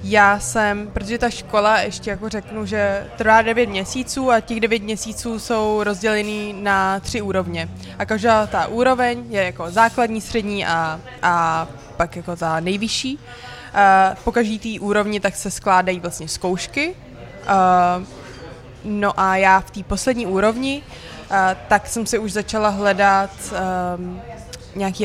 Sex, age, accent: female, 20-39, native